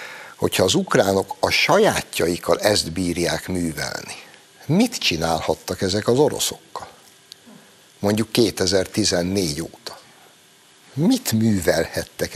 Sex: male